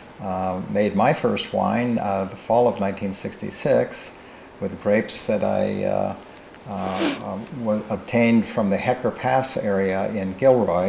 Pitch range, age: 100-115 Hz, 50-69